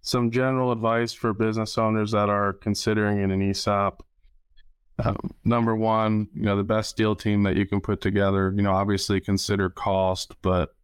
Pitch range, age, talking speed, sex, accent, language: 95-110 Hz, 20-39, 170 wpm, male, American, English